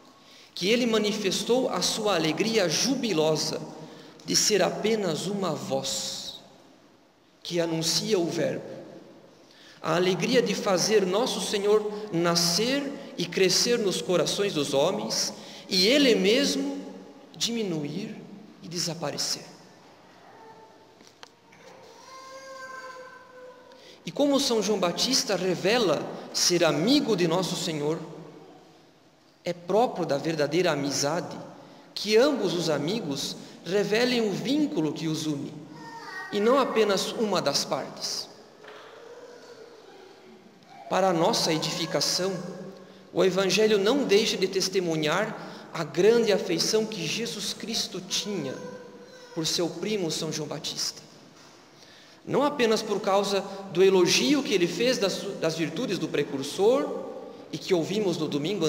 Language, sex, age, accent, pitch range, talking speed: Portuguese, male, 40-59, Brazilian, 165-230 Hz, 110 wpm